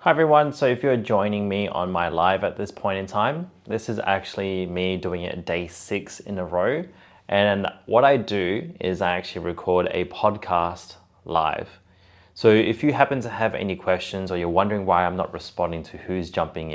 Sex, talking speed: male, 195 wpm